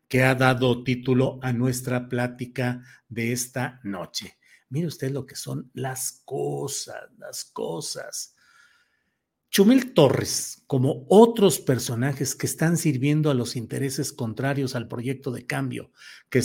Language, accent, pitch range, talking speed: Spanish, Mexican, 125-155 Hz, 130 wpm